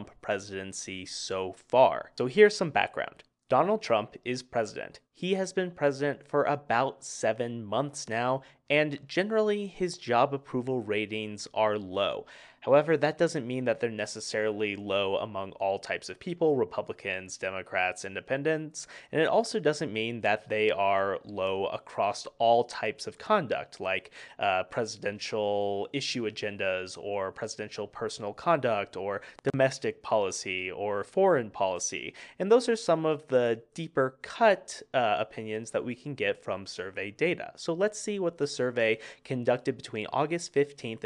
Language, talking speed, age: English, 145 wpm, 20-39